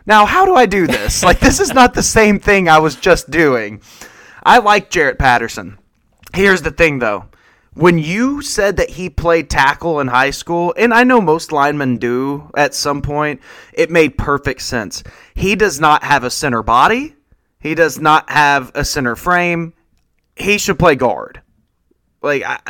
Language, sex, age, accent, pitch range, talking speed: English, male, 20-39, American, 140-185 Hz, 175 wpm